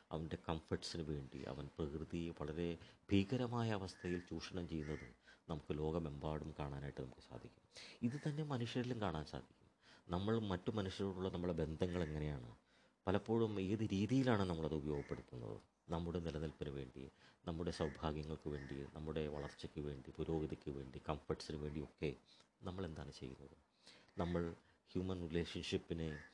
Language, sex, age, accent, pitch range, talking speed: Malayalam, male, 30-49, native, 75-100 Hz, 110 wpm